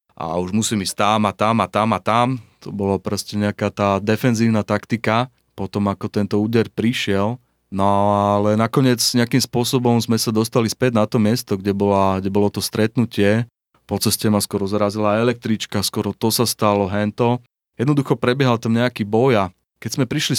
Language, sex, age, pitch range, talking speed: Slovak, male, 30-49, 100-120 Hz, 180 wpm